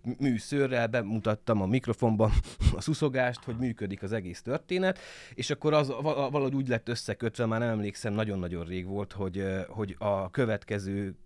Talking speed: 150 wpm